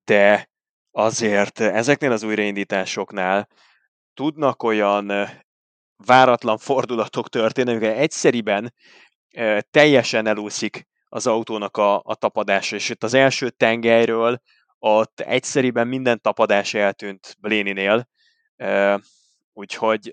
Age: 20-39